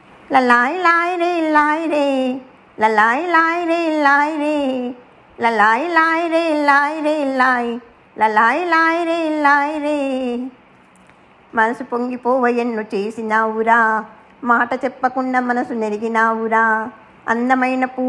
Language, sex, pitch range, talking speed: English, male, 210-265 Hz, 55 wpm